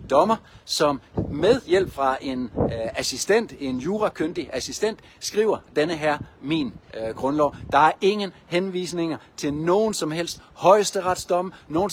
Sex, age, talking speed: male, 60-79, 135 wpm